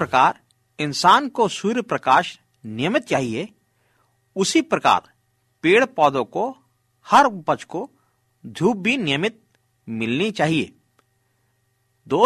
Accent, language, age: native, Hindi, 50-69